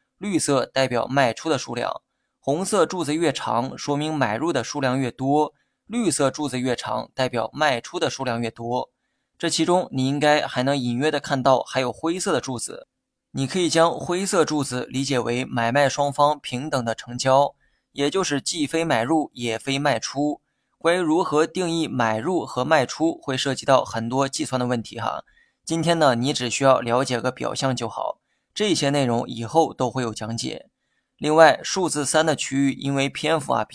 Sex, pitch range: male, 125-150 Hz